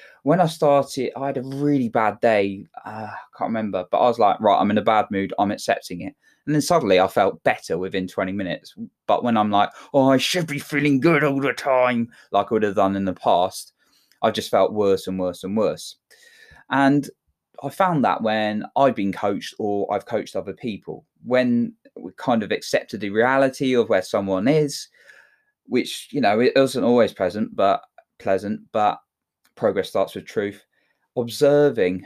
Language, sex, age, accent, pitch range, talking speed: English, male, 20-39, British, 95-140 Hz, 195 wpm